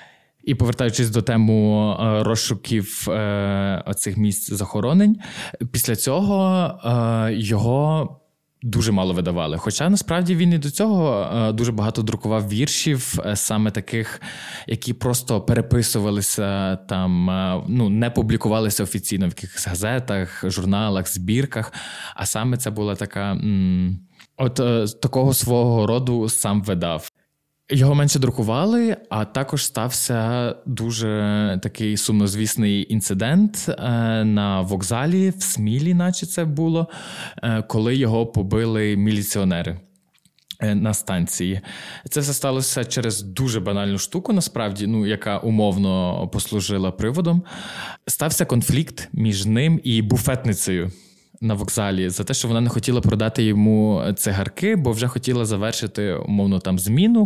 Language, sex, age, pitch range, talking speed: Ukrainian, male, 20-39, 105-130 Hz, 115 wpm